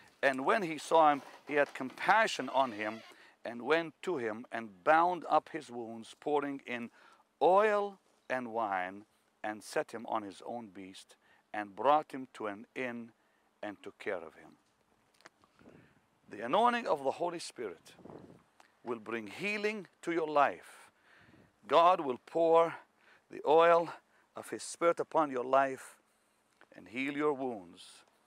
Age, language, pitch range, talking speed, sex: 50-69, English, 110-155 Hz, 145 wpm, male